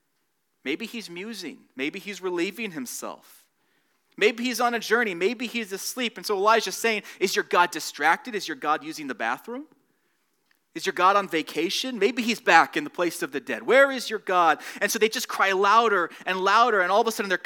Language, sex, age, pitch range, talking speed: English, male, 30-49, 155-230 Hz, 210 wpm